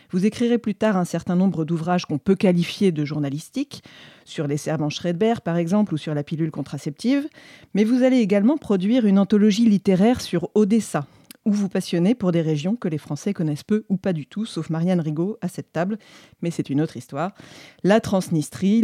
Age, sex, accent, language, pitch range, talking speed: 40-59, female, French, French, 160-205 Hz, 200 wpm